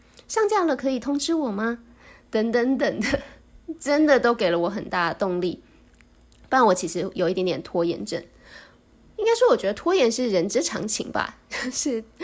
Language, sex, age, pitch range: Chinese, female, 20-39, 185-250 Hz